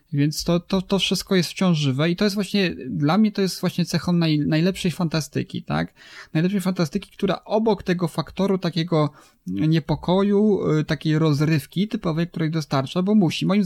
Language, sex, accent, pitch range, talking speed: Polish, male, native, 150-185 Hz, 165 wpm